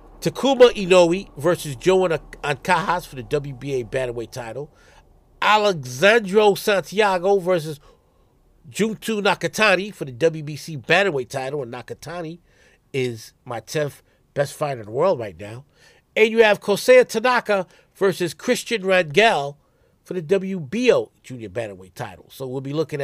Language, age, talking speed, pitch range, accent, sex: English, 50-69, 130 wpm, 140-200 Hz, American, male